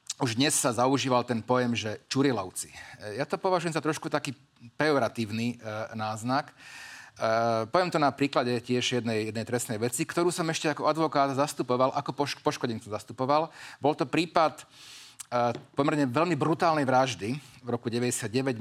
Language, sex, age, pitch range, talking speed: Slovak, male, 40-59, 115-145 Hz, 155 wpm